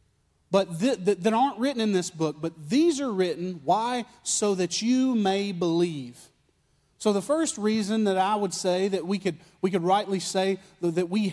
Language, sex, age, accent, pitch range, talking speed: English, male, 40-59, American, 175-225 Hz, 185 wpm